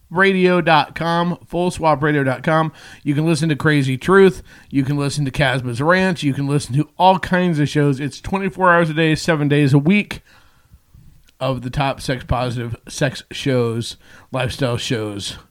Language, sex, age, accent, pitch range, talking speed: English, male, 40-59, American, 130-175 Hz, 155 wpm